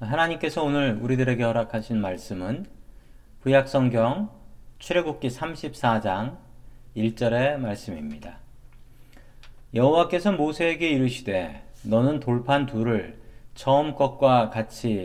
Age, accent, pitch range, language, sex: 40-59, native, 115-150 Hz, Korean, male